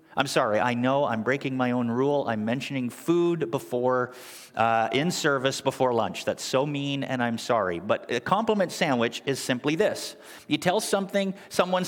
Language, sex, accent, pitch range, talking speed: English, male, American, 145-210 Hz, 175 wpm